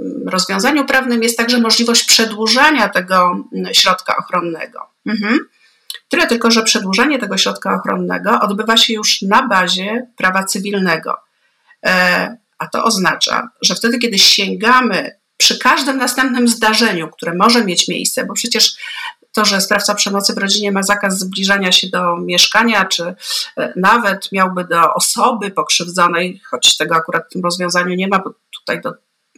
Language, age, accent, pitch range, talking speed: Polish, 50-69, native, 190-250 Hz, 140 wpm